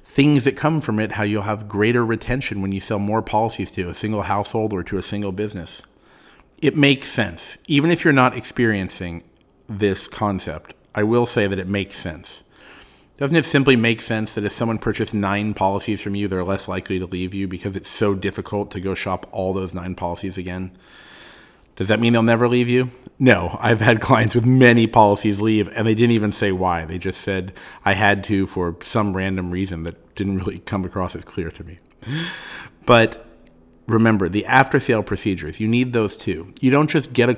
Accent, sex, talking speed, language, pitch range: American, male, 200 wpm, English, 95-115 Hz